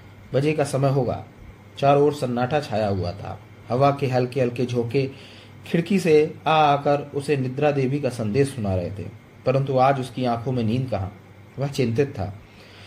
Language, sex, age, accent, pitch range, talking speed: Hindi, male, 30-49, native, 105-150 Hz, 75 wpm